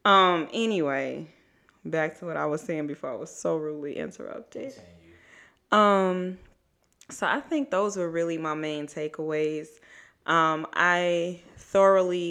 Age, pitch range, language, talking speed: 20-39, 150-175 Hz, English, 130 wpm